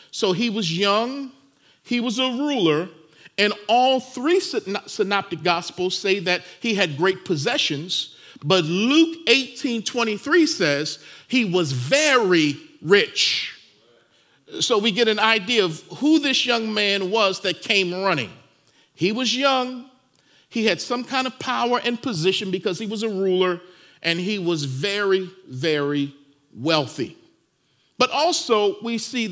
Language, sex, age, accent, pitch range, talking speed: English, male, 50-69, American, 190-260 Hz, 135 wpm